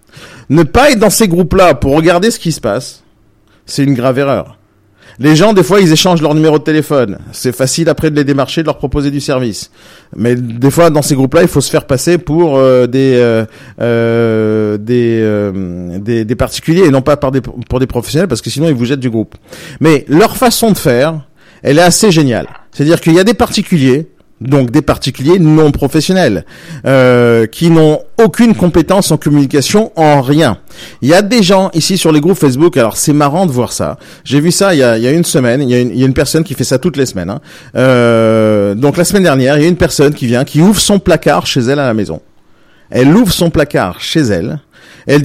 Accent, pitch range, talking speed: French, 125-170 Hz, 225 wpm